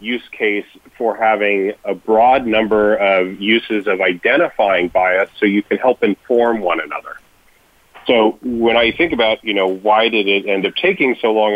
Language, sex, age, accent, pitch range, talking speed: English, male, 30-49, American, 100-115 Hz, 175 wpm